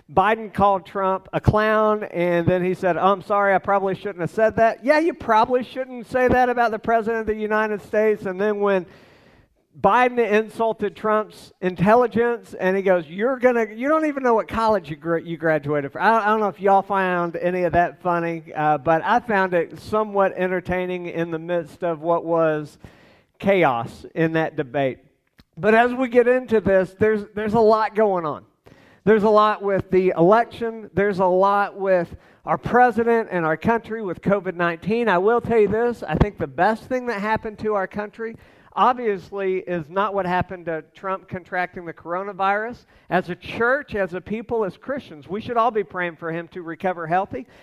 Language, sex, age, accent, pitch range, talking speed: English, male, 50-69, American, 180-220 Hz, 190 wpm